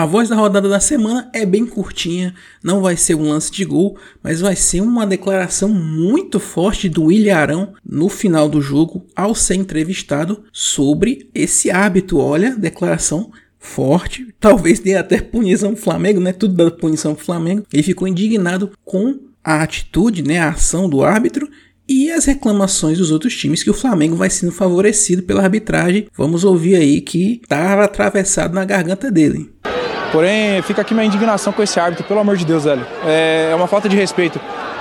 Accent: Brazilian